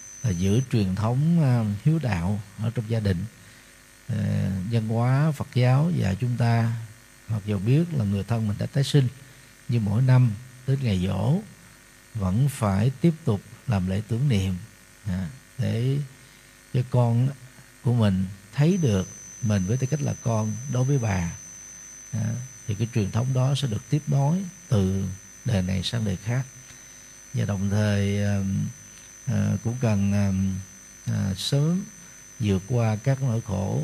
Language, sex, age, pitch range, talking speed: Vietnamese, male, 60-79, 100-130 Hz, 150 wpm